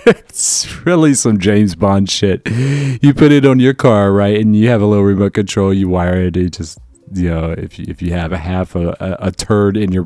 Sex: male